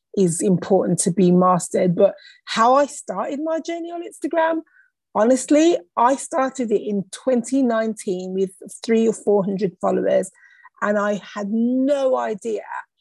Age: 30-49